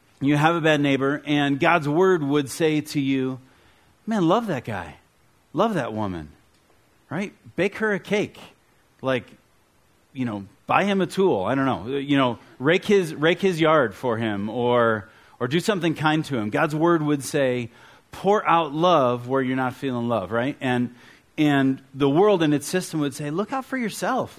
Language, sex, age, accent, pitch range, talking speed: English, male, 40-59, American, 120-160 Hz, 185 wpm